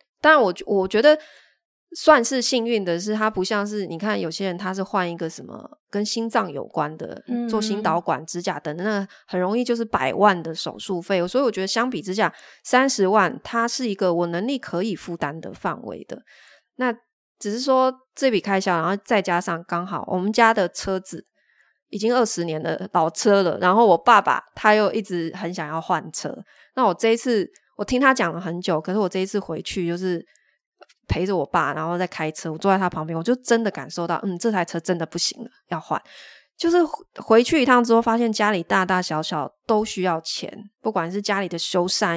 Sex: female